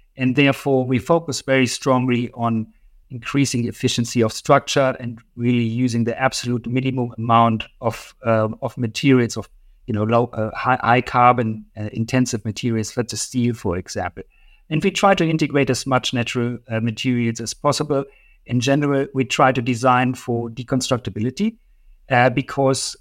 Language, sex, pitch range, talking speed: English, male, 115-130 Hz, 155 wpm